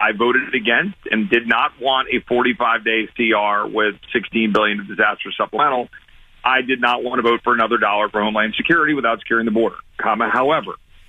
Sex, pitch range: male, 115-160 Hz